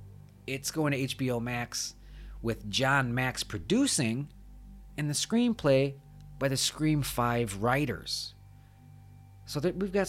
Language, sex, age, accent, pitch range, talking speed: English, male, 30-49, American, 95-145 Hz, 120 wpm